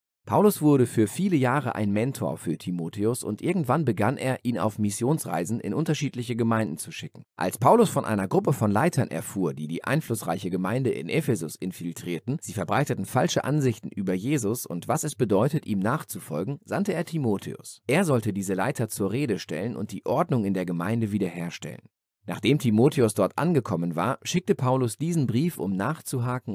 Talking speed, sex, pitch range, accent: 170 wpm, male, 105-140 Hz, German